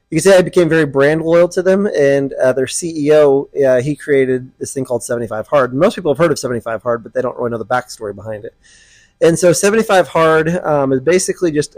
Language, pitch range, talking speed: English, 130-160 Hz, 235 wpm